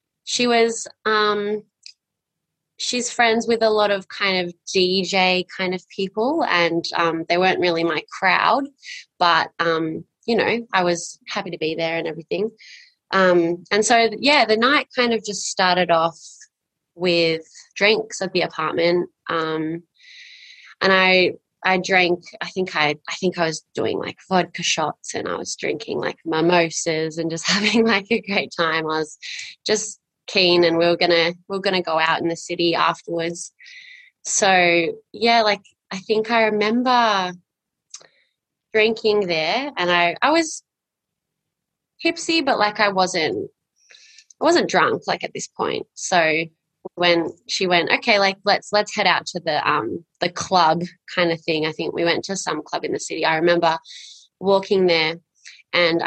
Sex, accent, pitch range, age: female, Australian, 170-215 Hz, 20-39